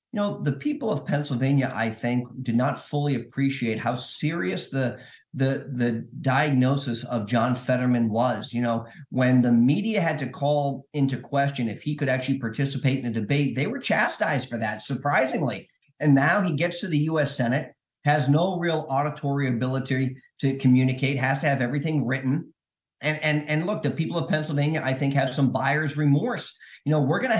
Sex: male